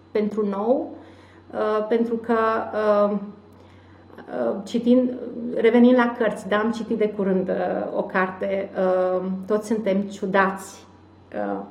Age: 30-49